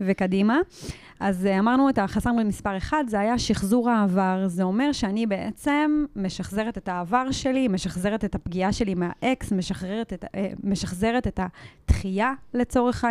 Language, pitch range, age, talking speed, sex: Hebrew, 190-240 Hz, 20-39, 135 wpm, female